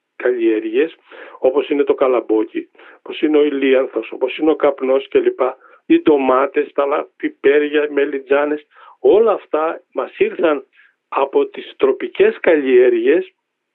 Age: 50-69